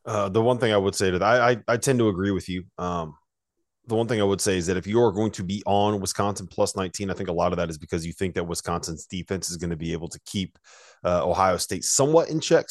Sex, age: male, 30-49